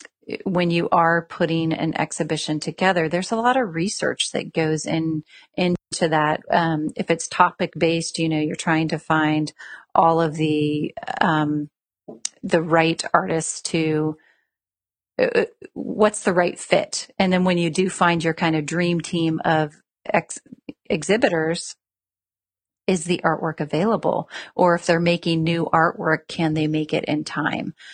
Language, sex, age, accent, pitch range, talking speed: English, female, 40-59, American, 160-185 Hz, 155 wpm